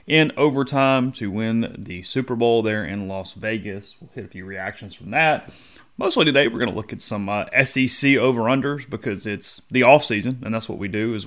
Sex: male